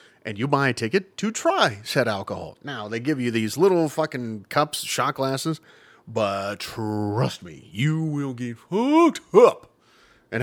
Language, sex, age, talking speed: English, male, 30-49, 160 wpm